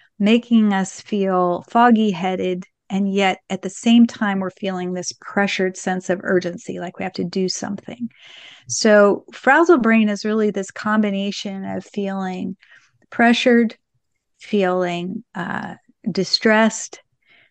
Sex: female